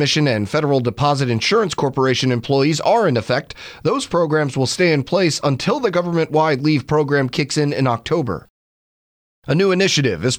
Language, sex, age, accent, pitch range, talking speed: English, male, 30-49, American, 130-175 Hz, 160 wpm